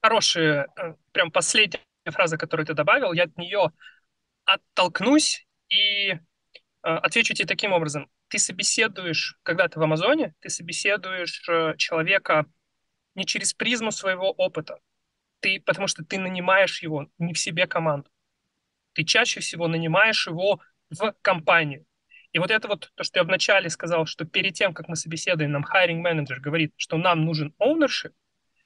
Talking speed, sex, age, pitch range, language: 145 wpm, male, 30-49, 165-215 Hz, Russian